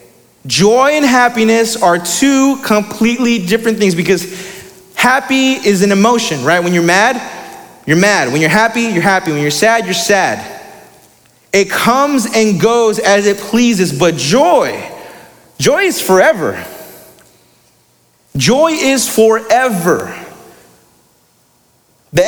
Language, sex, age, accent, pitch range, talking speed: English, male, 30-49, American, 195-245 Hz, 120 wpm